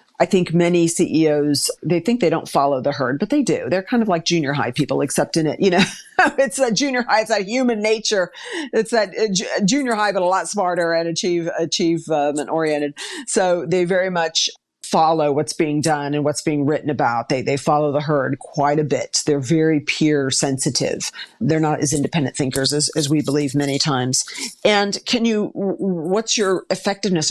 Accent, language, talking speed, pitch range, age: American, English, 195 wpm, 145-185 Hz, 50-69